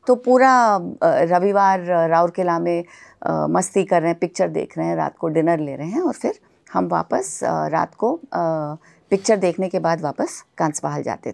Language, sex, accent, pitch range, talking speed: Hindi, female, native, 170-235 Hz, 175 wpm